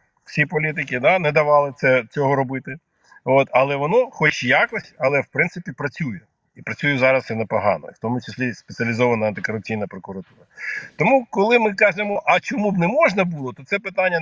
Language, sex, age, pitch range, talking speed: Ukrainian, male, 50-69, 130-180 Hz, 175 wpm